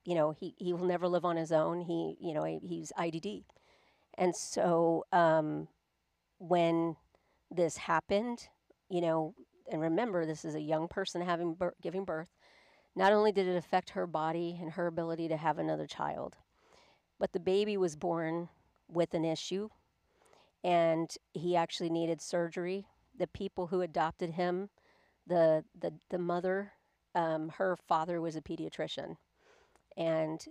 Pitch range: 160-180 Hz